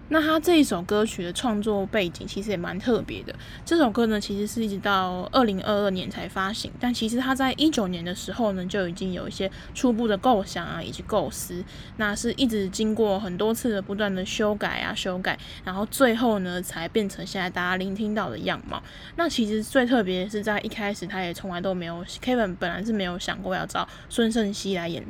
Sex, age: female, 10-29